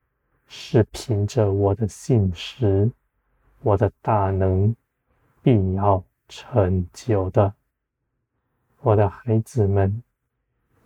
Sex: male